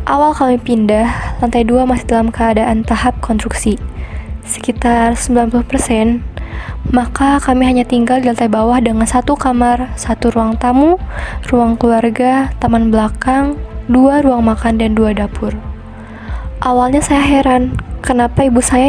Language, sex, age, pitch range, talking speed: Indonesian, female, 10-29, 225-255 Hz, 130 wpm